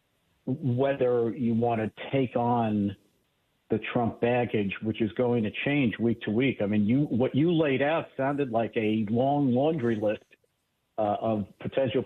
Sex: male